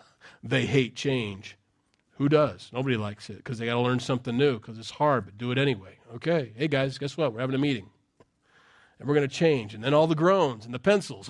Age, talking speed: 40-59, 235 wpm